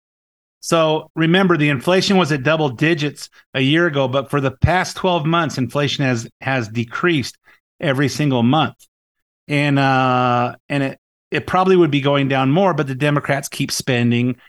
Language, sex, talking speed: English, male, 165 wpm